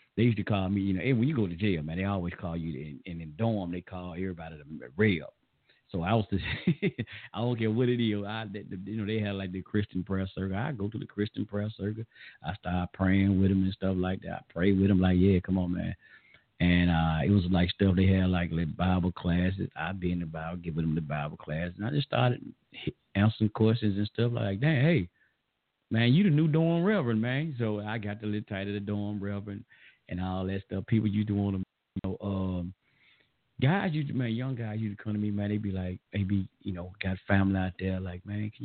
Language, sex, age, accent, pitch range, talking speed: English, male, 50-69, American, 95-120 Hz, 250 wpm